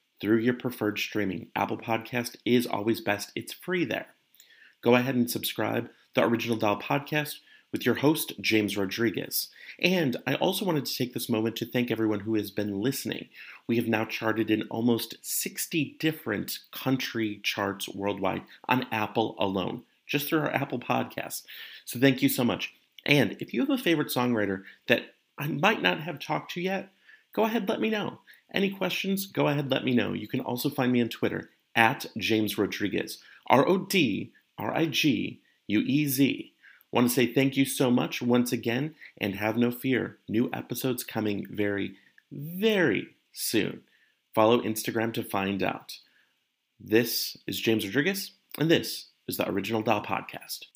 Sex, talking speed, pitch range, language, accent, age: male, 170 wpm, 110-140 Hz, English, American, 30-49